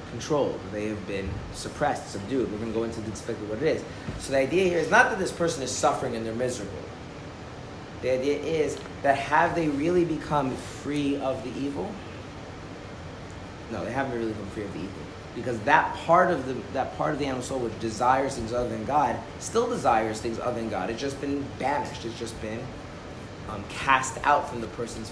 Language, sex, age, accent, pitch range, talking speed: English, male, 30-49, American, 105-135 Hz, 205 wpm